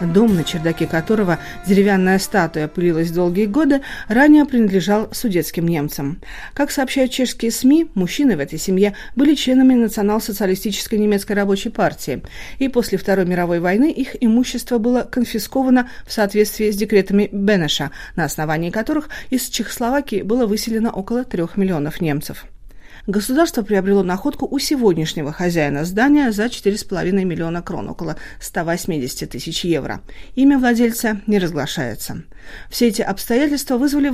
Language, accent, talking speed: Russian, native, 130 wpm